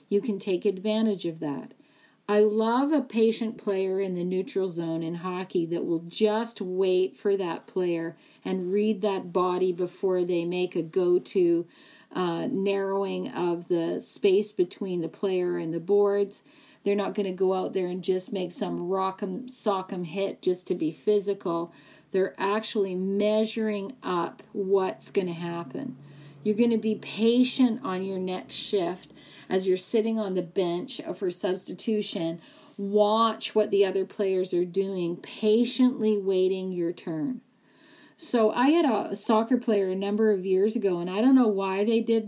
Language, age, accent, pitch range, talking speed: English, 40-59, American, 185-220 Hz, 160 wpm